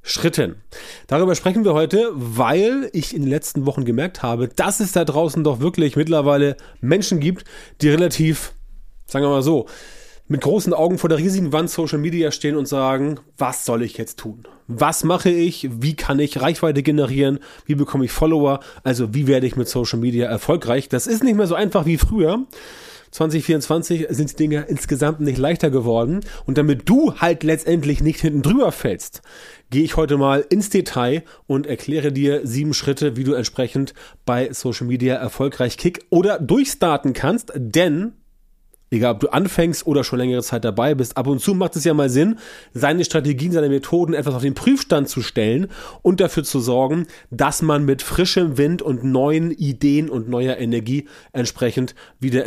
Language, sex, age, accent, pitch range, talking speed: German, male, 30-49, German, 130-170 Hz, 180 wpm